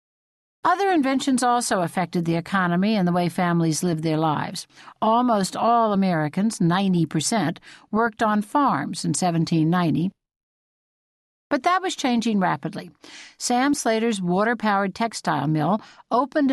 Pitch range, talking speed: 175-235 Hz, 120 wpm